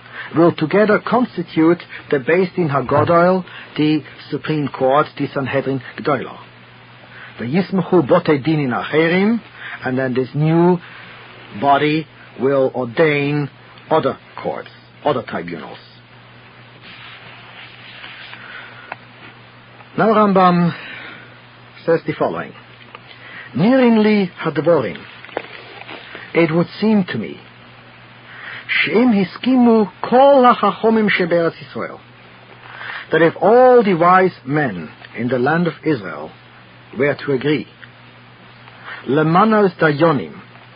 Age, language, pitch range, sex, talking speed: 50-69, English, 135-180 Hz, male, 85 wpm